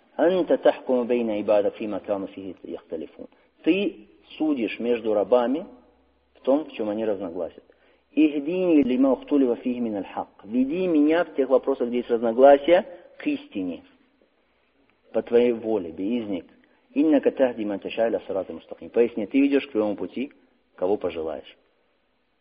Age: 40-59